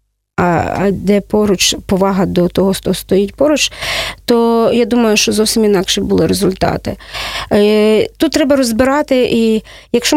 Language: Russian